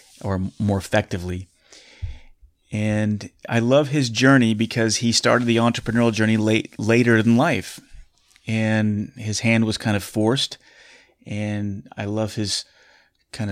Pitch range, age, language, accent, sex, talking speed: 100-115 Hz, 30-49, English, American, male, 130 wpm